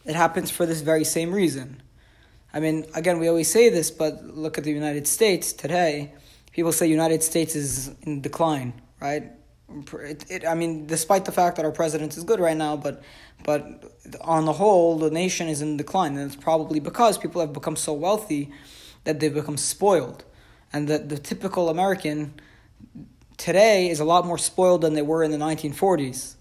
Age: 20-39